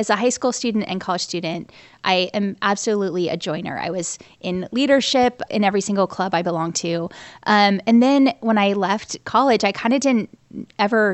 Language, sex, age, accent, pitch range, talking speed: English, female, 20-39, American, 185-220 Hz, 195 wpm